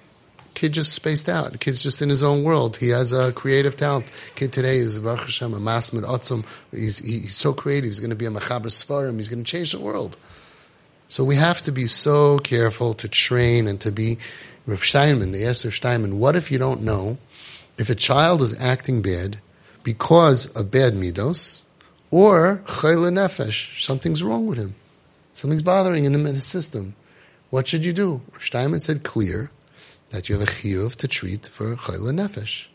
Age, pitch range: 30-49, 115-150 Hz